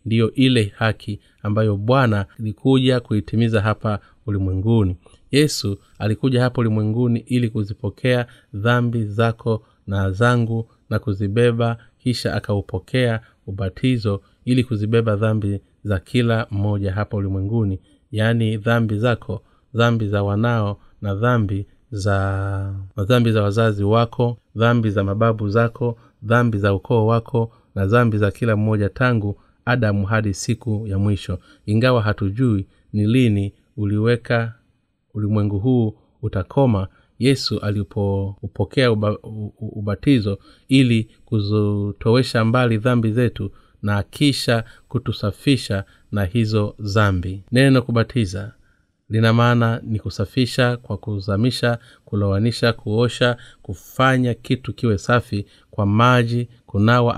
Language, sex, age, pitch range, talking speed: Swahili, male, 30-49, 100-120 Hz, 110 wpm